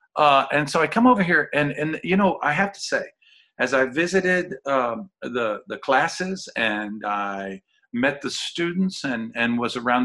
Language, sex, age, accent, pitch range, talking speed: English, male, 50-69, American, 115-190 Hz, 185 wpm